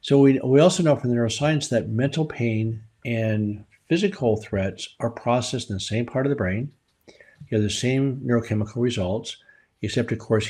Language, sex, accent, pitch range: English, male, American, 110-135 Hz